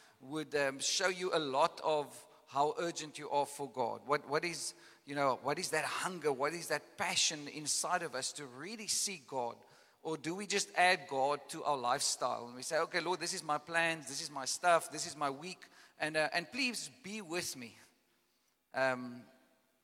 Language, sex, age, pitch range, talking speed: English, male, 50-69, 145-180 Hz, 205 wpm